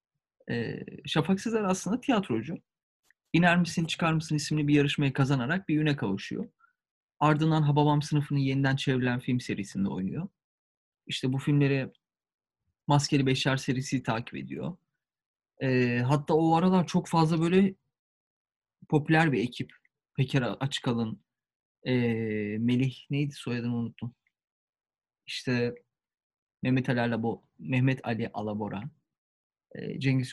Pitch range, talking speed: 130-180 Hz, 105 wpm